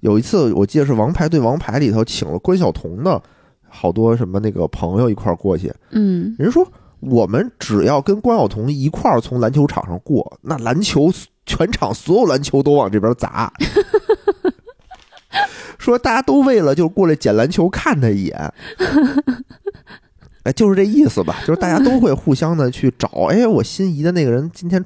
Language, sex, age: Chinese, male, 20-39